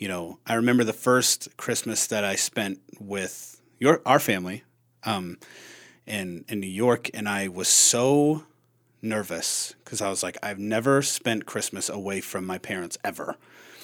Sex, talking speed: male, 155 wpm